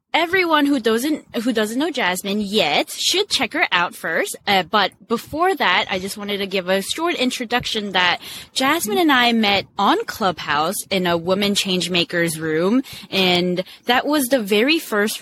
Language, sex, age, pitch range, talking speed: English, female, 20-39, 185-260 Hz, 175 wpm